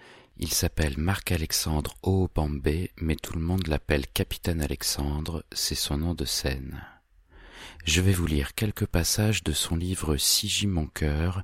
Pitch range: 75-95 Hz